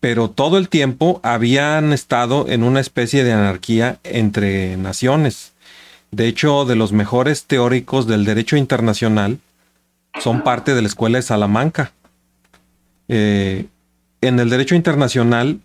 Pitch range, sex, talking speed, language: 105-135 Hz, male, 130 wpm, Spanish